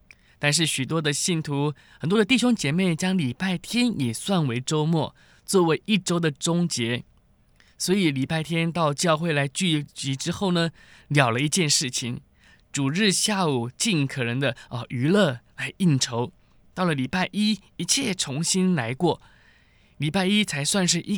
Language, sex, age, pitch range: Chinese, male, 20-39, 140-190 Hz